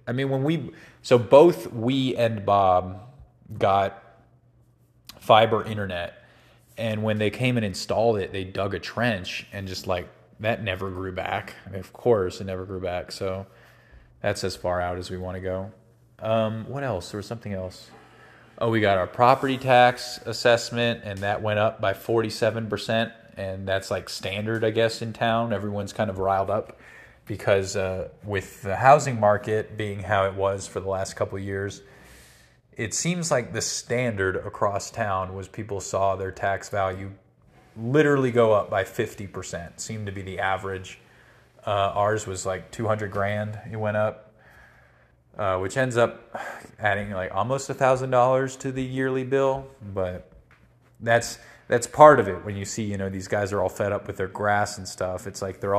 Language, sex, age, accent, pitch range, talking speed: English, male, 20-39, American, 95-115 Hz, 180 wpm